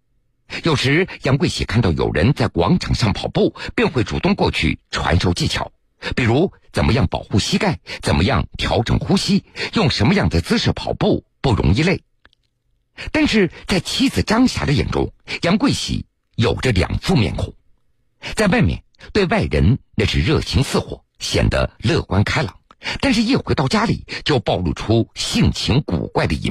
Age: 50-69